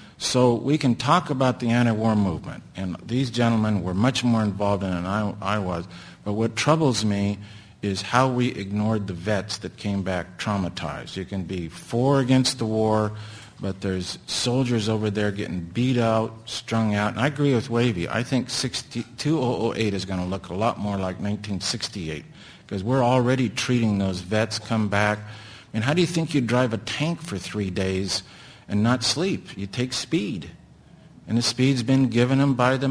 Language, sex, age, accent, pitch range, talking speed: English, male, 50-69, American, 100-125 Hz, 190 wpm